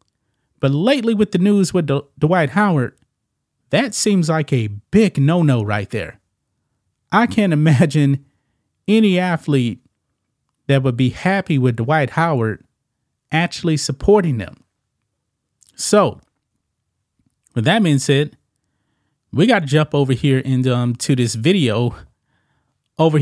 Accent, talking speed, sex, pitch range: American, 125 wpm, male, 120-160 Hz